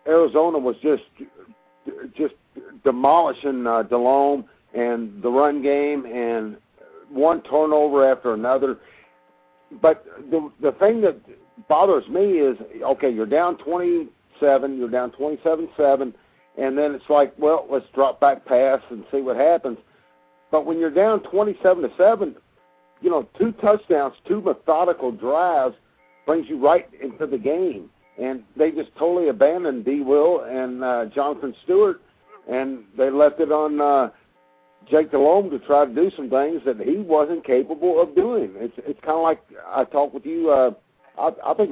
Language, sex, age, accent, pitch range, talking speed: English, male, 60-79, American, 125-165 Hz, 150 wpm